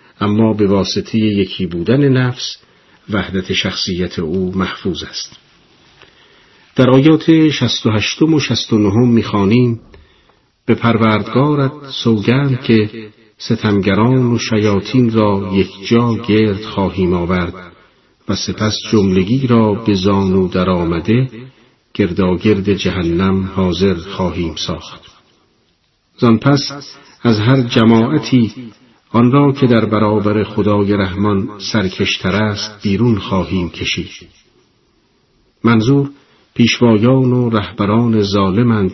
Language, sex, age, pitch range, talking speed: Persian, male, 50-69, 95-120 Hz, 100 wpm